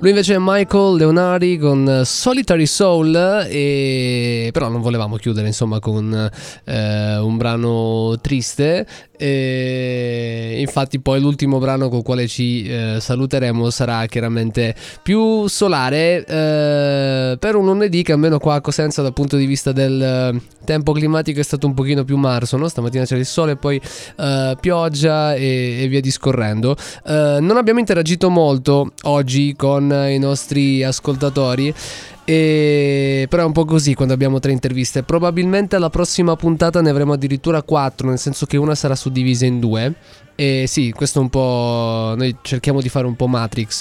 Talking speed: 160 wpm